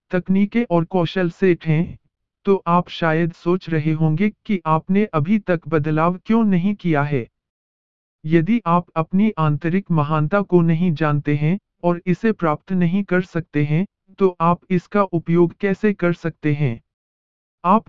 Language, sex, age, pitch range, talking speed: Hindi, male, 50-69, 155-190 Hz, 150 wpm